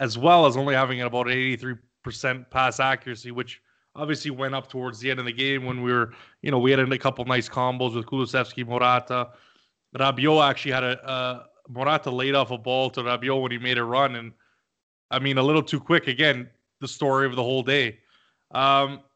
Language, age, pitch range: English, 20-39, 125-140 Hz